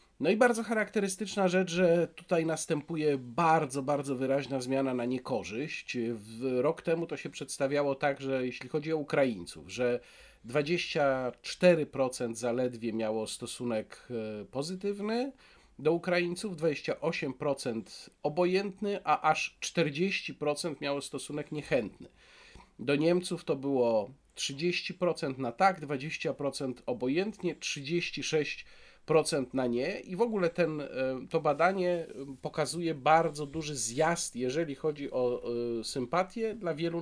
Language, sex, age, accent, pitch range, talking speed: Polish, male, 40-59, native, 135-170 Hz, 110 wpm